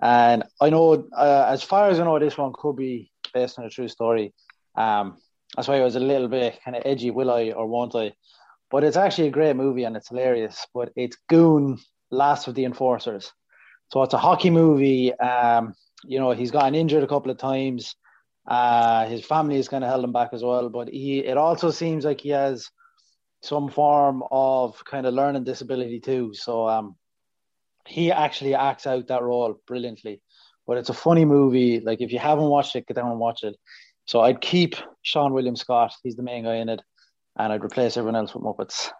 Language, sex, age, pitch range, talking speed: English, male, 20-39, 120-145 Hz, 210 wpm